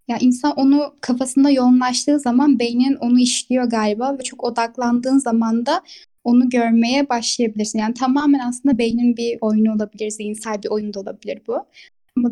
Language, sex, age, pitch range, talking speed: Turkish, female, 10-29, 230-285 Hz, 155 wpm